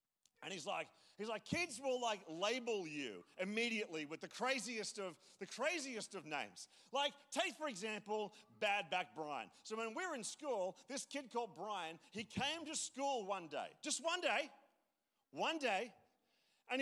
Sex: male